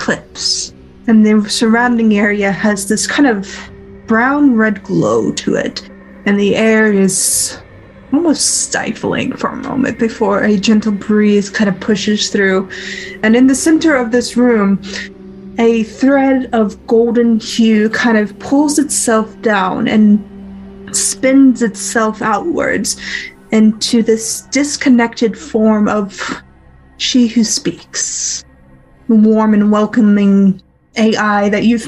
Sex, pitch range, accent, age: female, 200-235 Hz, American, 20-39